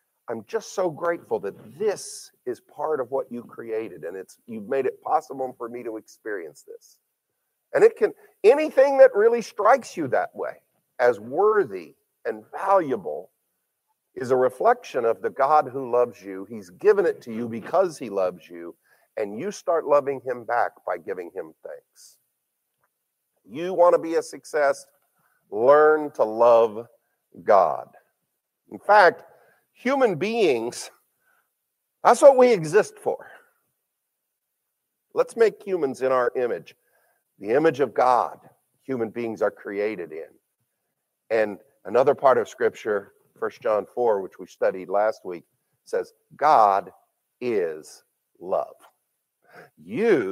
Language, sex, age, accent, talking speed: English, male, 50-69, American, 140 wpm